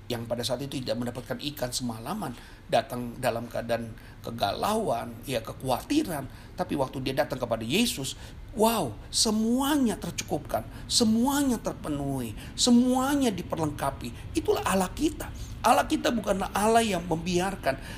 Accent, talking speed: native, 120 wpm